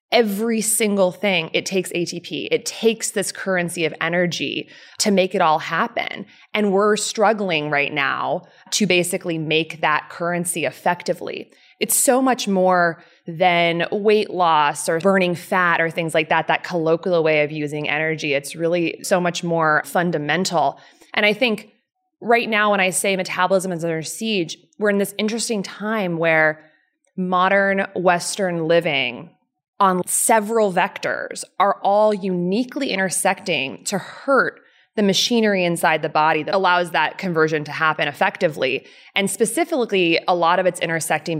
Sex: female